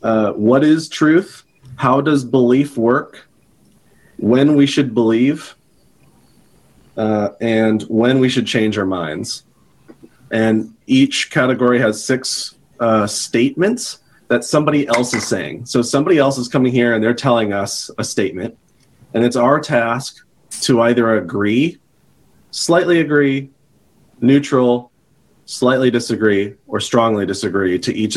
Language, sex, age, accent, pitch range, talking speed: English, male, 30-49, American, 110-140 Hz, 130 wpm